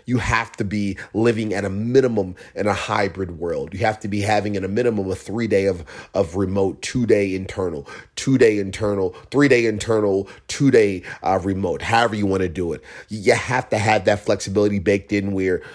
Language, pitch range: English, 95-115 Hz